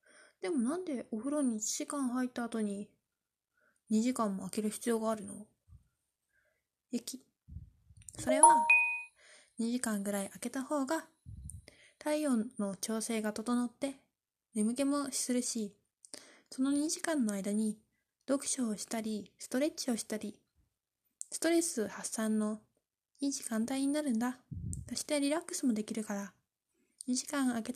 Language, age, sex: Japanese, 20-39, female